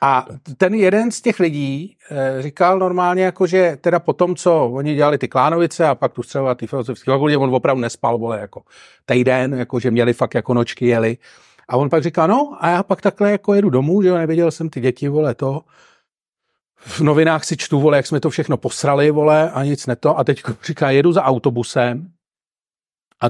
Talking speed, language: 205 wpm, Czech